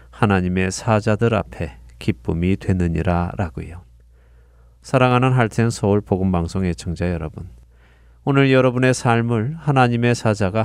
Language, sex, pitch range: Korean, male, 85-120 Hz